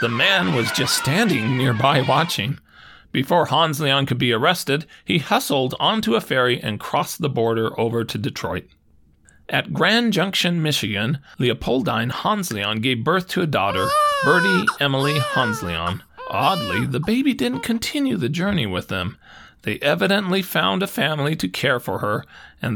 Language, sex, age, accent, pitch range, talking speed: English, male, 40-59, American, 110-175 Hz, 150 wpm